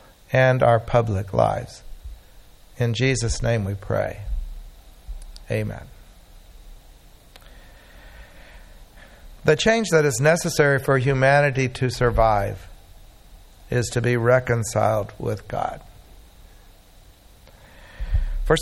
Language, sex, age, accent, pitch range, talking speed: English, male, 60-79, American, 110-150 Hz, 85 wpm